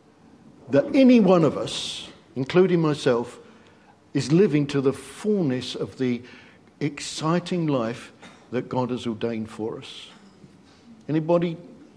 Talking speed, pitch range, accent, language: 115 wpm, 135-180 Hz, British, English